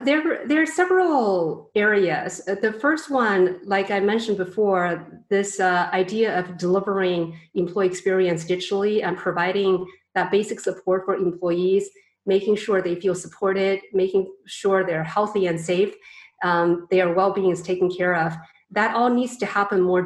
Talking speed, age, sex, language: 155 wpm, 30-49, female, English